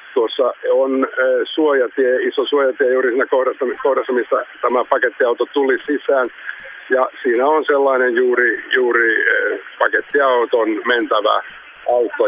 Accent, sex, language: native, male, Finnish